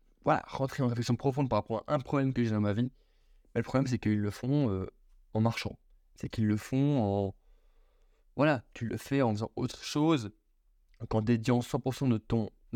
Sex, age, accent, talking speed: male, 20-39, French, 200 wpm